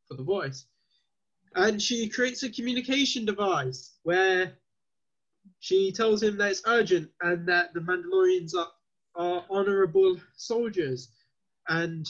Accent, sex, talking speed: British, male, 125 wpm